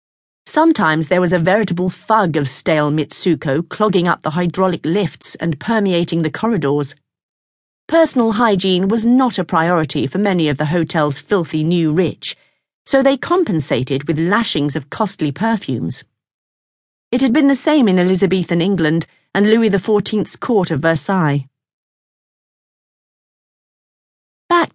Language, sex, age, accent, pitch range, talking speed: English, female, 40-59, British, 150-200 Hz, 135 wpm